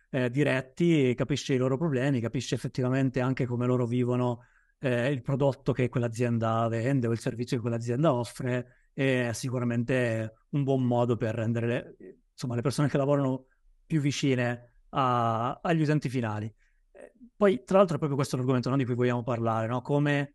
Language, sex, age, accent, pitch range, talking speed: Italian, male, 30-49, native, 125-145 Hz, 170 wpm